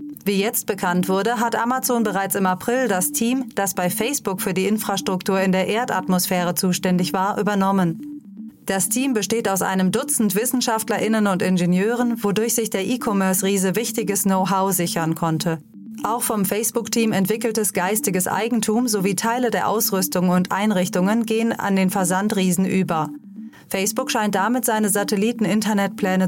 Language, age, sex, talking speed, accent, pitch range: German, 30-49, female, 140 wpm, German, 185-225 Hz